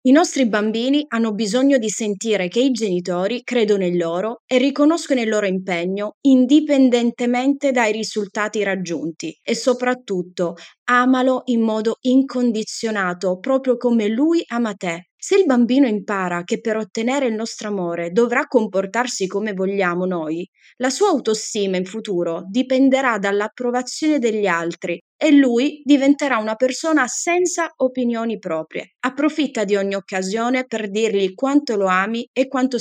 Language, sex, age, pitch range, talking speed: Italian, female, 20-39, 200-260 Hz, 140 wpm